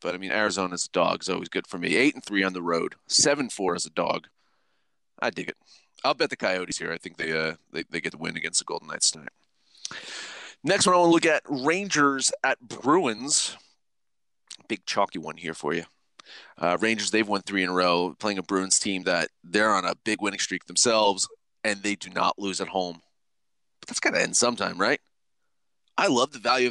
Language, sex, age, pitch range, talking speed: English, male, 30-49, 95-125 Hz, 220 wpm